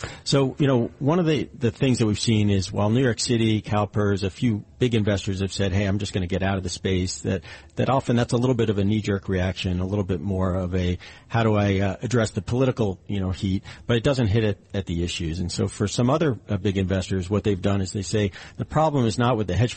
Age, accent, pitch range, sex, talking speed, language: 40-59, American, 95-110 Hz, male, 270 wpm, English